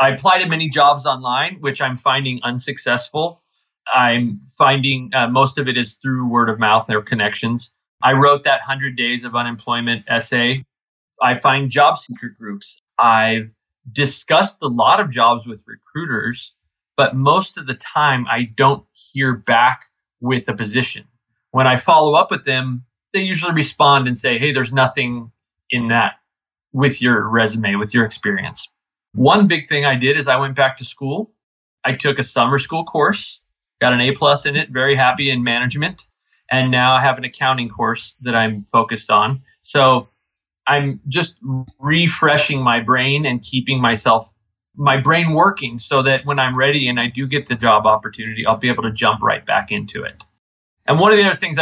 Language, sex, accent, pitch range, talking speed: English, male, American, 120-140 Hz, 180 wpm